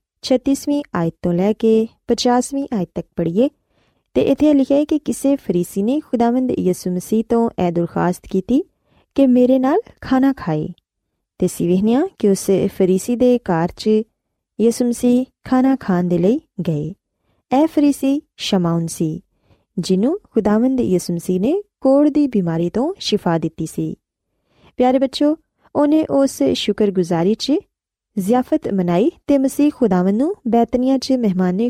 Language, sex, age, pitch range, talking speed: Urdu, female, 20-39, 185-270 Hz, 115 wpm